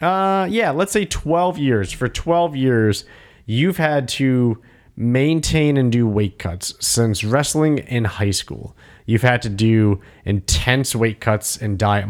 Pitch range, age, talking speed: 100-120 Hz, 30-49, 155 wpm